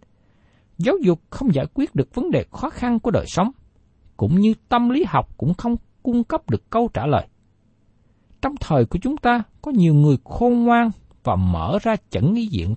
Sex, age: male, 60-79